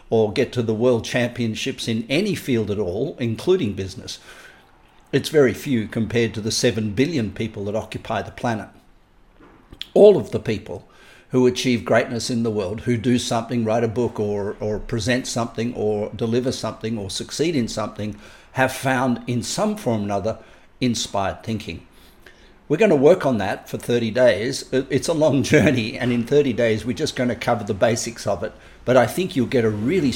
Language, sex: English, male